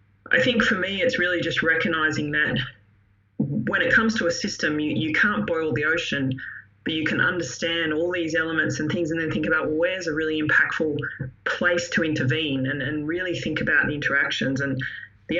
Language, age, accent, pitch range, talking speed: English, 20-39, Australian, 140-165 Hz, 195 wpm